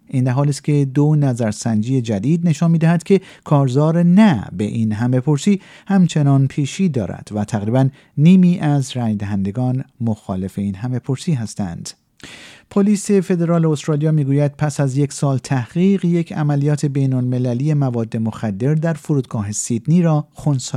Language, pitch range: Persian, 115-155 Hz